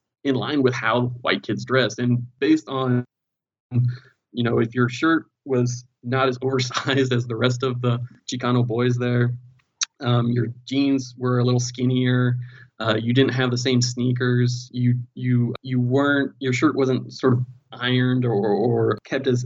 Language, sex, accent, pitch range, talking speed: English, male, American, 120-130 Hz, 170 wpm